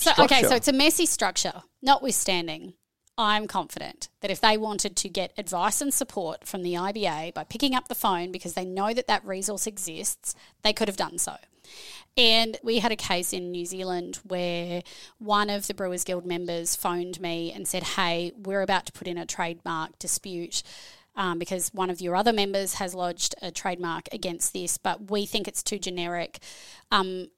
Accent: Australian